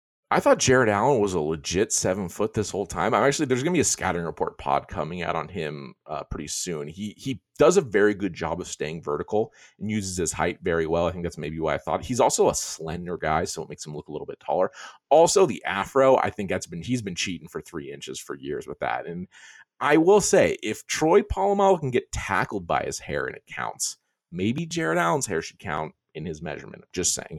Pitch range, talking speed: 85-145 Hz, 240 wpm